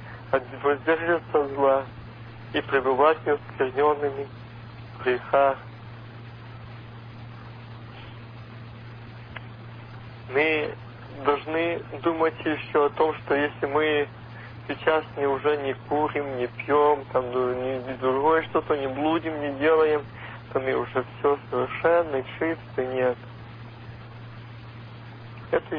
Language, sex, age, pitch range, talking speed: Russian, male, 50-69, 115-150 Hz, 90 wpm